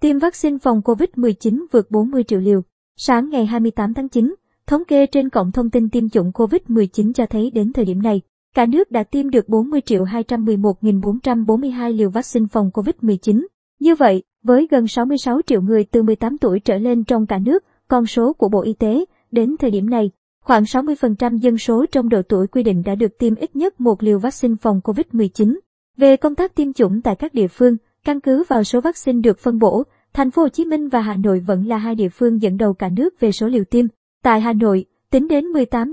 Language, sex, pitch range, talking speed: Vietnamese, male, 220-260 Hz, 215 wpm